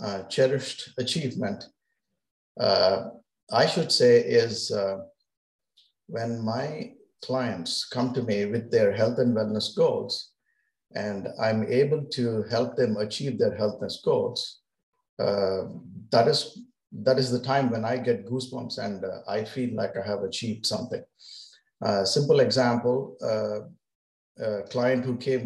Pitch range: 110-135 Hz